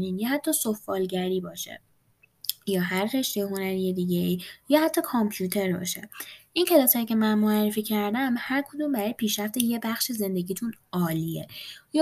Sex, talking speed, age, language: female, 150 wpm, 20-39, Persian